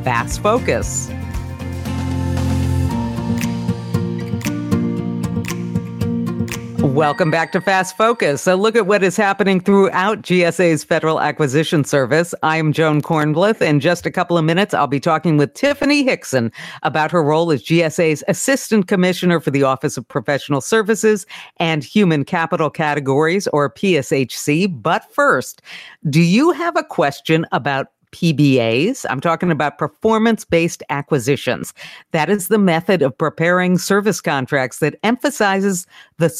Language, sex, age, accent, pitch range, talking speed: English, female, 50-69, American, 145-195 Hz, 130 wpm